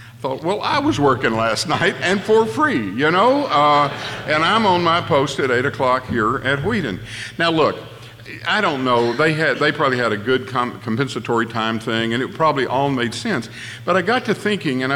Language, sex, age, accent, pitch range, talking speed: English, male, 50-69, American, 120-160 Hz, 210 wpm